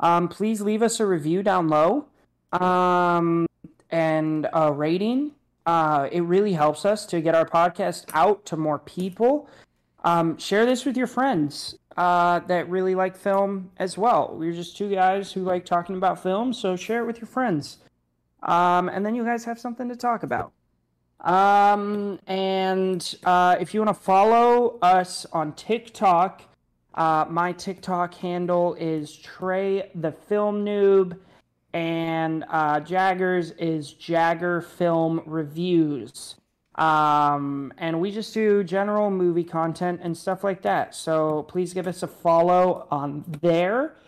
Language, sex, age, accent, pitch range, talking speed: English, male, 30-49, American, 165-200 Hz, 150 wpm